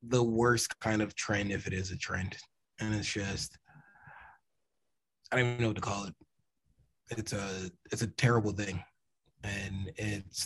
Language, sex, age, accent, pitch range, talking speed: English, male, 20-39, American, 95-110 Hz, 165 wpm